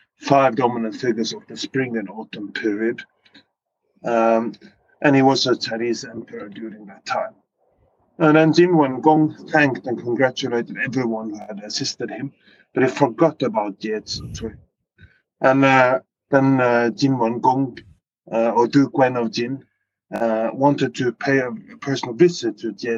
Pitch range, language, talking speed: 115-140 Hz, English, 160 wpm